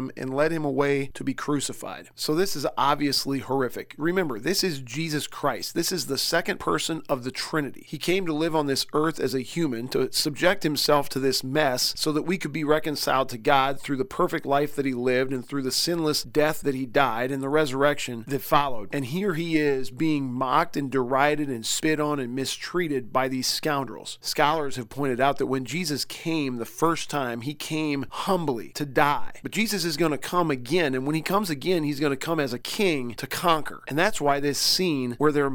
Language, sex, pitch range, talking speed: English, male, 130-155 Hz, 220 wpm